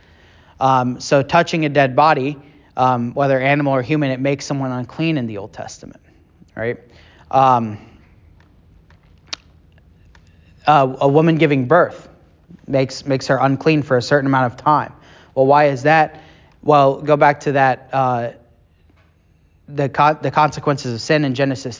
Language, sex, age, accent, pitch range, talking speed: English, male, 30-49, American, 120-150 Hz, 150 wpm